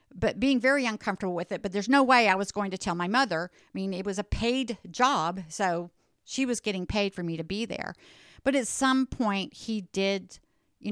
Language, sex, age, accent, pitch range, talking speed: English, female, 50-69, American, 185-250 Hz, 225 wpm